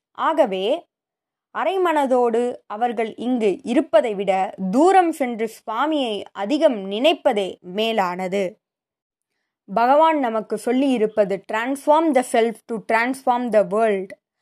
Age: 20-39